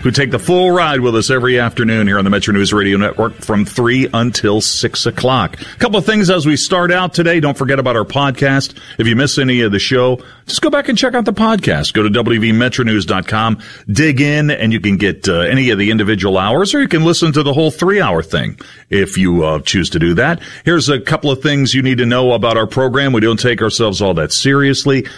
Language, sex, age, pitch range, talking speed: English, male, 40-59, 105-150 Hz, 240 wpm